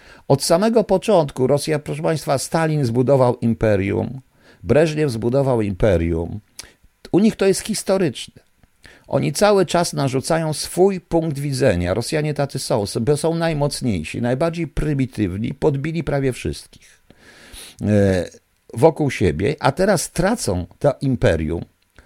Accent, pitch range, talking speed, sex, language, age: native, 115-160 Hz, 110 wpm, male, Polish, 50-69